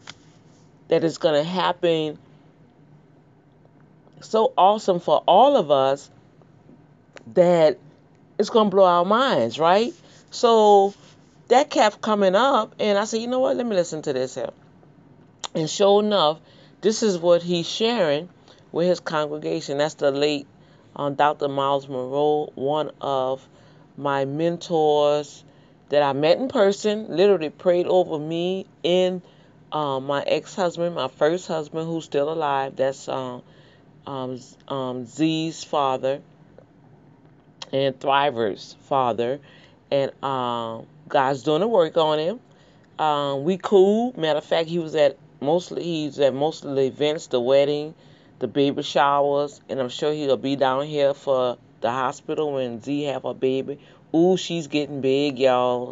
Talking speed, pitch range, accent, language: 145 wpm, 140-175 Hz, American, English